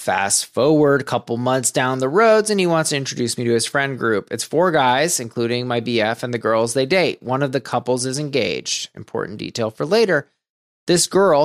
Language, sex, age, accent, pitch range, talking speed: English, male, 20-39, American, 125-200 Hz, 215 wpm